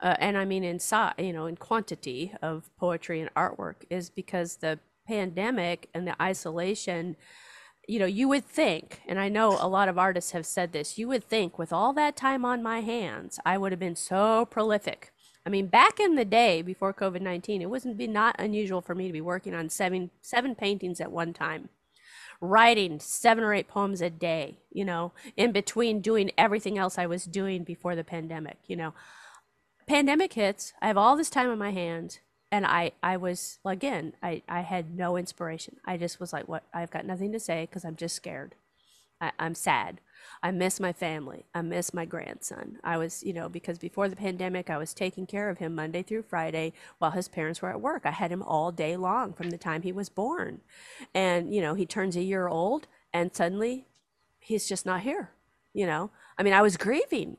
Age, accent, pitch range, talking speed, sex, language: 40-59, American, 170-205 Hz, 210 wpm, female, English